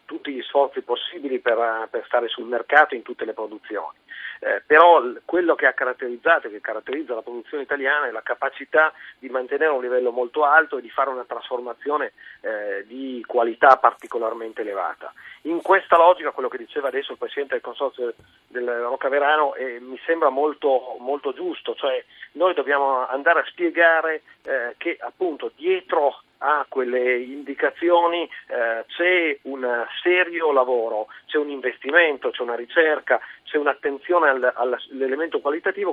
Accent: native